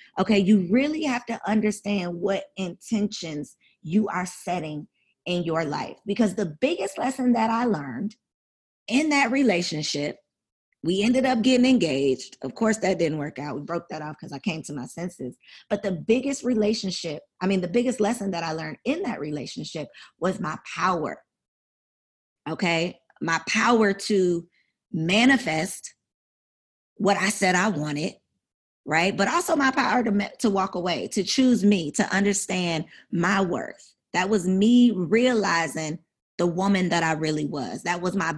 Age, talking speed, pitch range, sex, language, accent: 20-39, 160 wpm, 155-215 Hz, female, English, American